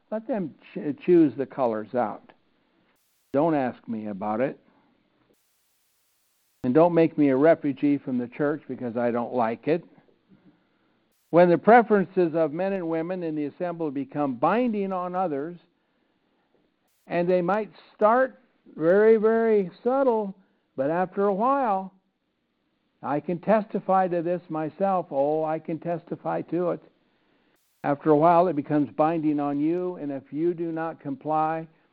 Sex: male